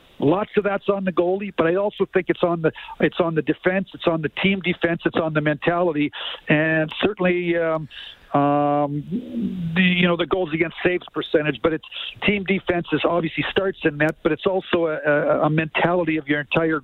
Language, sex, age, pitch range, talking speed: English, male, 50-69, 155-175 Hz, 200 wpm